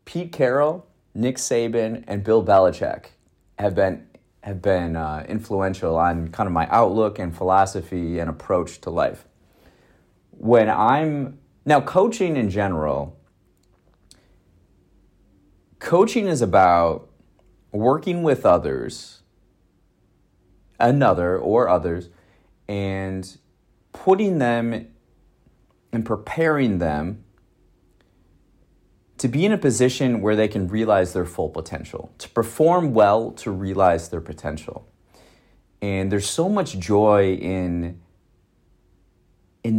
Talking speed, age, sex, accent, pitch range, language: 105 wpm, 30-49, male, American, 90-115 Hz, English